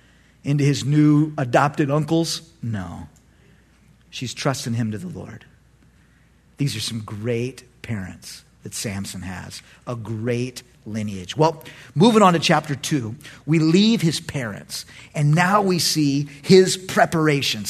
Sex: male